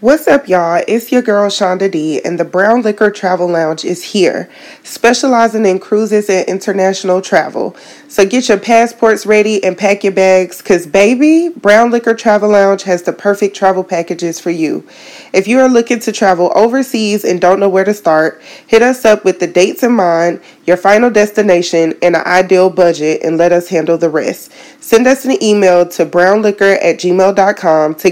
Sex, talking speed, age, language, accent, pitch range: female, 185 wpm, 20-39, English, American, 180-230 Hz